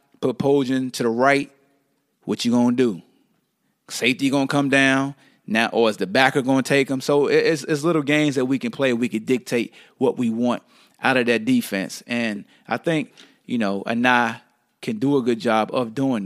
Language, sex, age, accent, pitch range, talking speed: English, male, 30-49, American, 130-170 Hz, 205 wpm